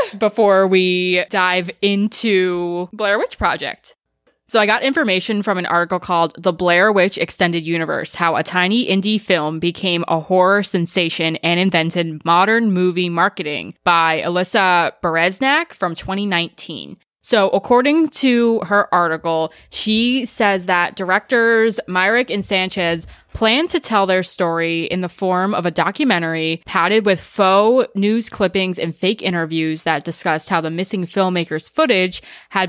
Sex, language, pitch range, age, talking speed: female, English, 170-210 Hz, 20-39, 145 wpm